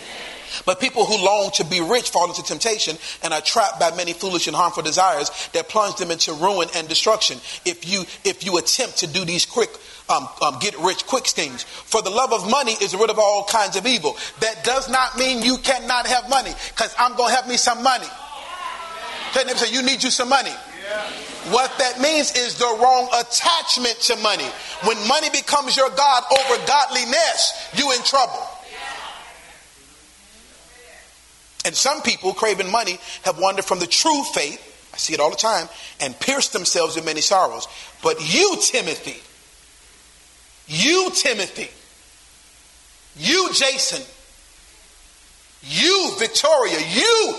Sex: male